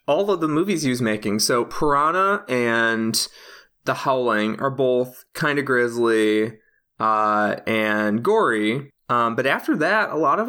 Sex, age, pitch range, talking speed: male, 20-39, 110-130 Hz, 150 wpm